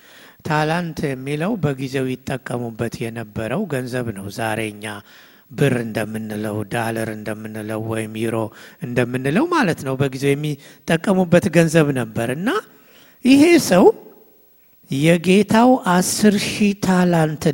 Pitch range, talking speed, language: 130-190 Hz, 60 wpm, English